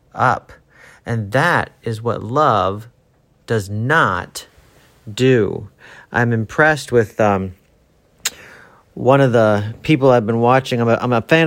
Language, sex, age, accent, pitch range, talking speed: English, male, 40-59, American, 110-150 Hz, 130 wpm